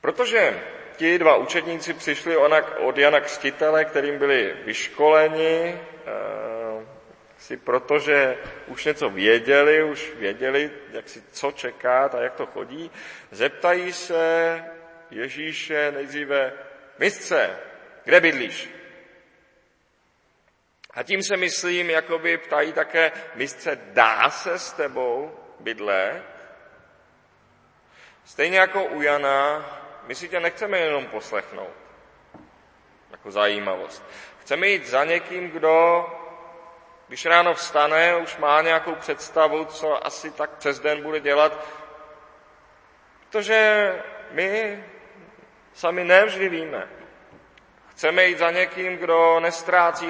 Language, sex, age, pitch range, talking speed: Czech, male, 40-59, 150-180 Hz, 105 wpm